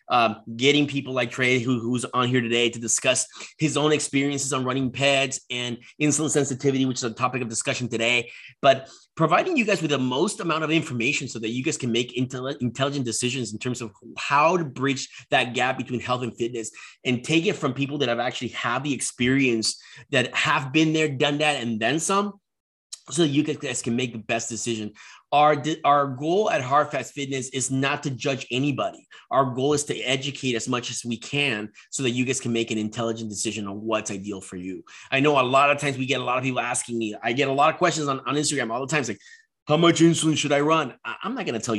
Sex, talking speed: male, 230 wpm